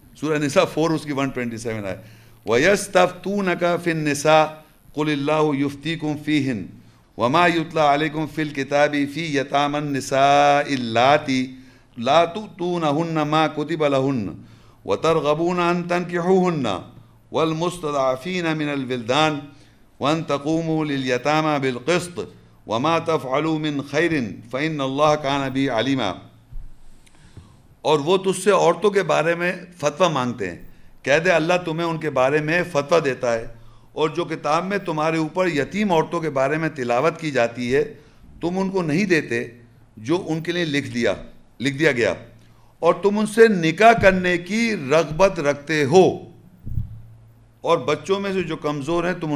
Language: English